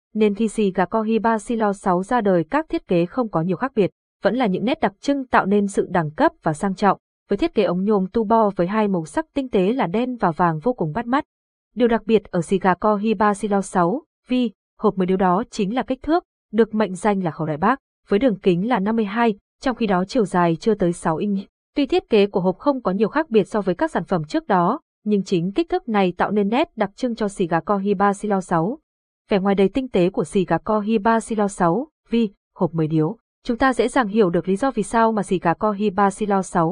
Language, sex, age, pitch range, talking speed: Vietnamese, female, 20-39, 185-230 Hz, 250 wpm